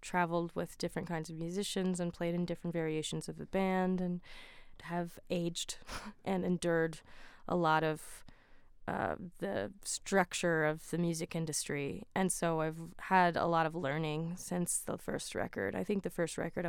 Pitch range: 160-185 Hz